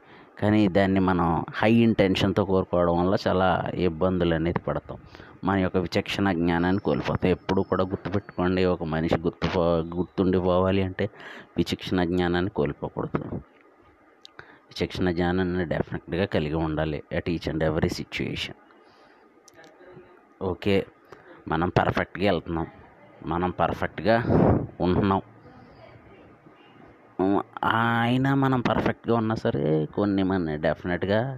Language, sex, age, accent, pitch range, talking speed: Telugu, male, 30-49, native, 85-105 Hz, 100 wpm